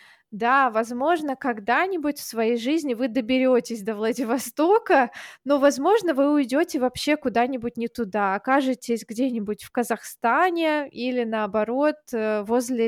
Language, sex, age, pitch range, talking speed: Russian, female, 20-39, 225-280 Hz, 115 wpm